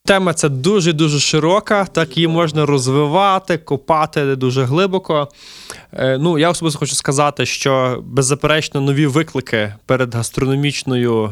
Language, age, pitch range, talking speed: Ukrainian, 20-39, 130-165 Hz, 115 wpm